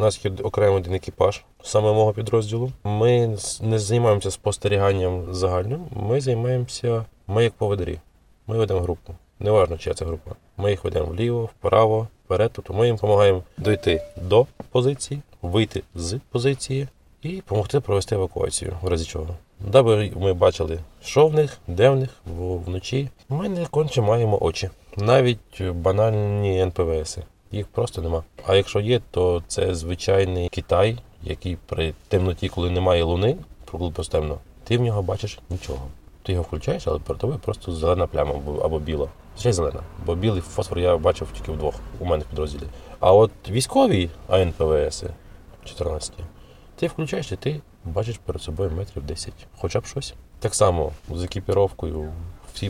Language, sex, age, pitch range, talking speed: Ukrainian, male, 20-39, 85-115 Hz, 155 wpm